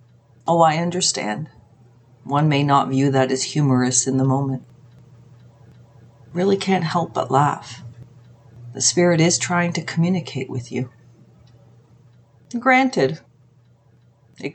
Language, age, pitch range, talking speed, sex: English, 40-59, 120-175 Hz, 115 wpm, female